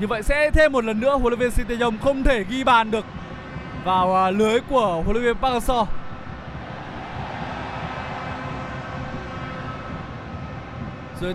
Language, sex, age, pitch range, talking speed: Vietnamese, male, 20-39, 210-265 Hz, 130 wpm